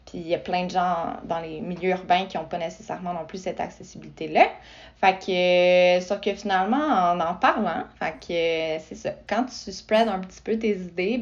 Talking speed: 210 wpm